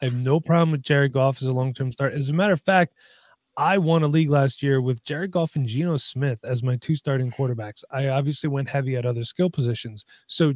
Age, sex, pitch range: 20-39, male, 135-165 Hz